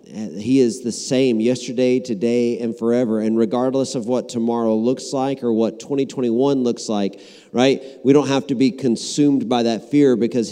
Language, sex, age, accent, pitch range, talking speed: English, male, 40-59, American, 120-140 Hz, 175 wpm